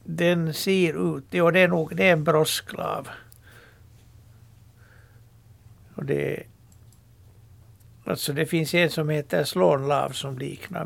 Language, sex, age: Swedish, male, 60-79